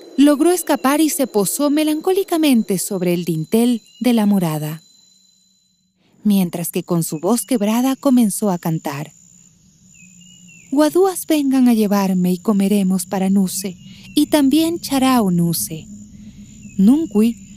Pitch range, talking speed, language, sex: 175-290 Hz, 115 wpm, Spanish, female